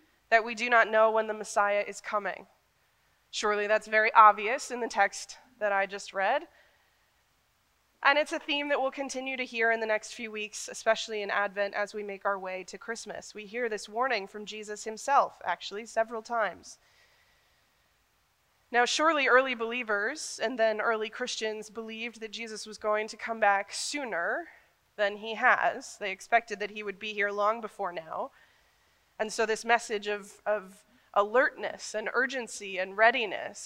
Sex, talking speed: female, 170 wpm